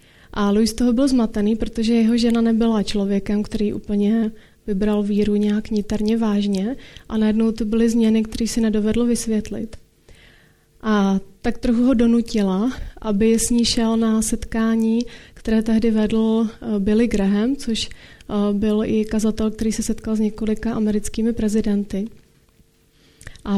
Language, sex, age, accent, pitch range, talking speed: Czech, female, 30-49, native, 215-230 Hz, 140 wpm